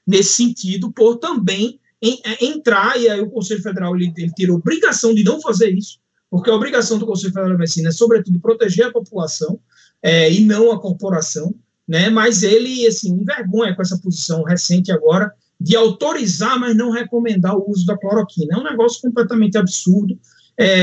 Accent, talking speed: Brazilian, 180 wpm